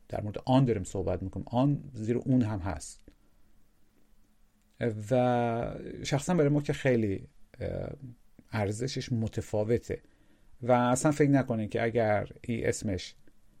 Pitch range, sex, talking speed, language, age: 105-130 Hz, male, 120 wpm, Persian, 40-59